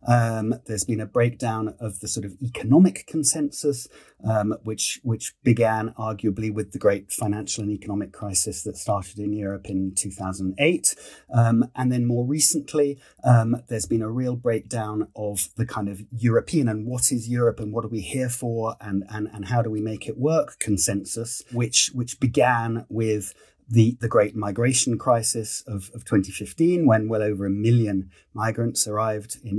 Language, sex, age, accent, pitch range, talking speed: English, male, 30-49, British, 110-135 Hz, 170 wpm